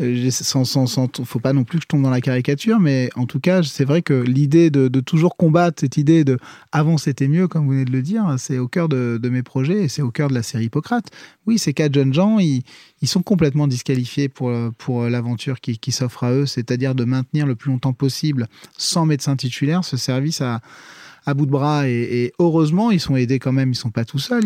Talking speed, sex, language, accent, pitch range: 250 wpm, male, French, French, 130-165 Hz